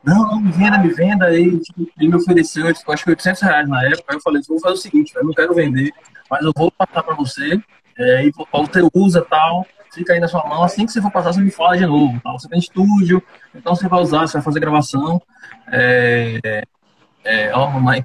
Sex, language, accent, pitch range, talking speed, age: male, Portuguese, Brazilian, 140-180 Hz, 235 wpm, 20-39